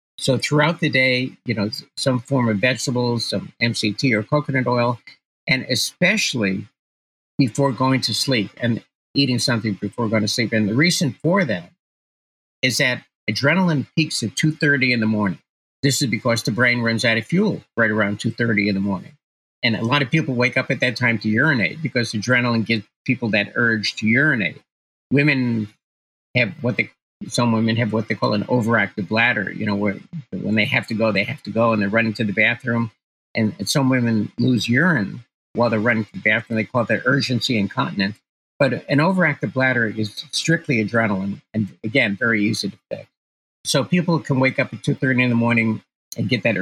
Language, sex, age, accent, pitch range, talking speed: English, male, 50-69, American, 110-135 Hz, 195 wpm